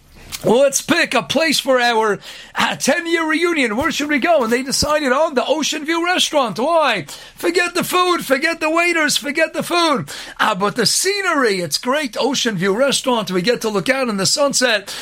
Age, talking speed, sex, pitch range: 50-69, 195 wpm, male, 260-320 Hz